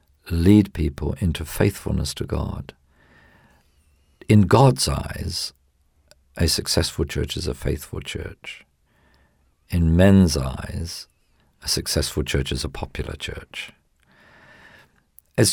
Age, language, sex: 50-69, English, male